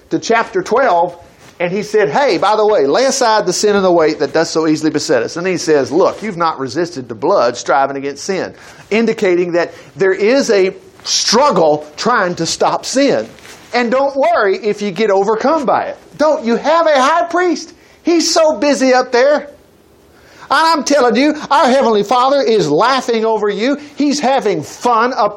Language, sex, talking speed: English, male, 190 wpm